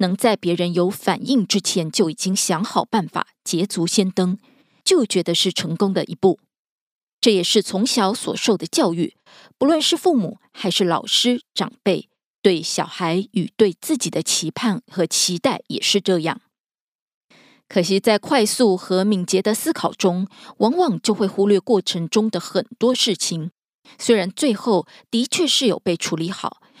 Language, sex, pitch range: Korean, female, 180-230 Hz